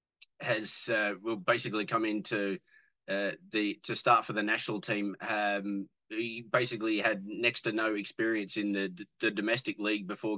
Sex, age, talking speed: male, 20-39, 160 wpm